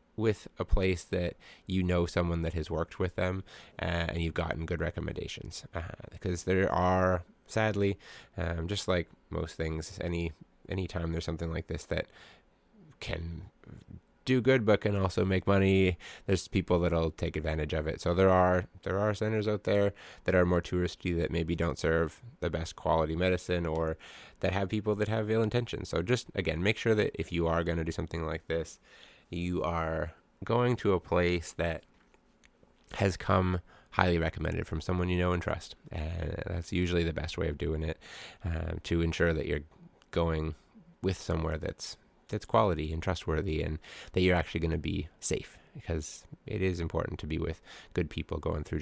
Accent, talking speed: American, 190 wpm